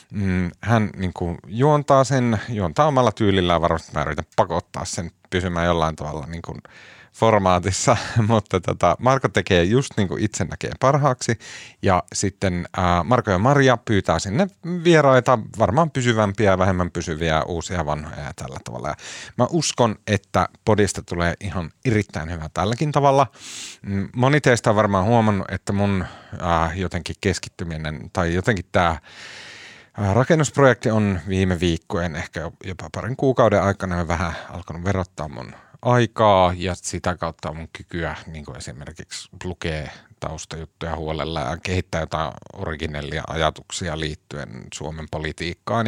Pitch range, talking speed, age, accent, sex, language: 85-115 Hz, 130 wpm, 30-49, native, male, Finnish